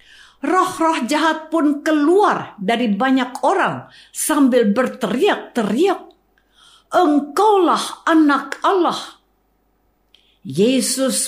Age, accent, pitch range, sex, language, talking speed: 50-69, native, 205-300 Hz, female, Indonesian, 75 wpm